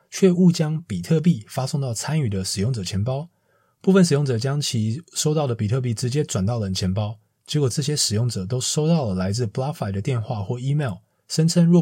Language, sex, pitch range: Chinese, male, 105-145 Hz